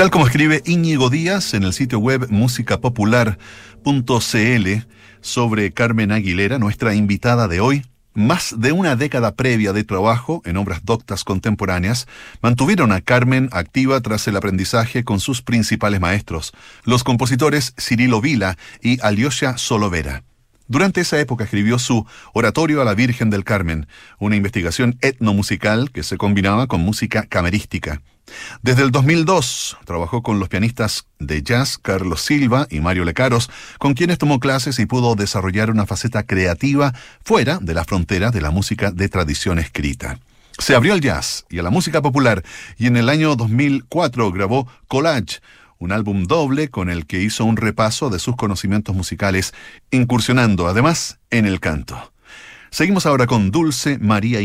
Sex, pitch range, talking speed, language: male, 100-130 Hz, 155 wpm, Spanish